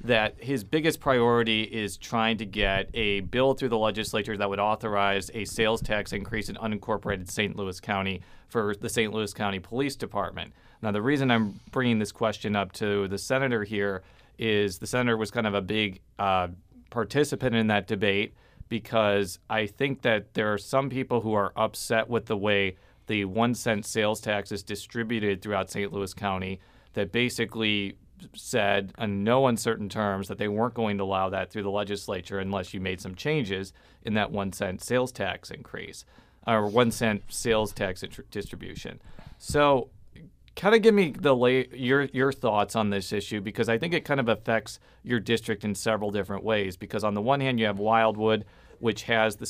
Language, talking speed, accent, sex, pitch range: English, 185 wpm, American, male, 100-115 Hz